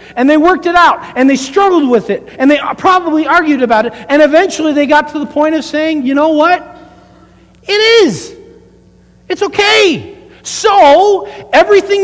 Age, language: 50-69, English